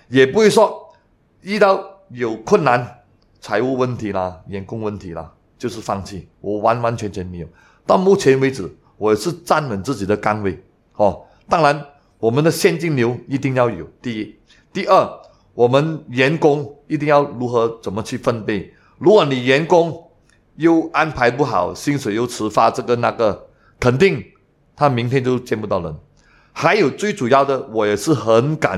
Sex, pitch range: male, 110-155 Hz